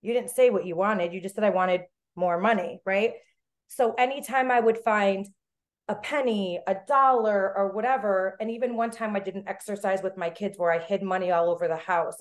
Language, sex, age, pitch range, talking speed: English, female, 30-49, 180-215 Hz, 215 wpm